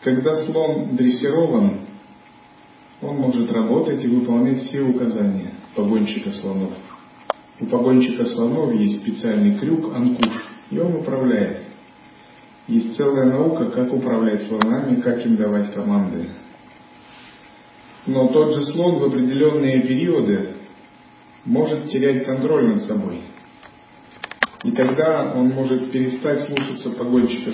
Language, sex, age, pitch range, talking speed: Russian, male, 40-59, 120-165 Hz, 110 wpm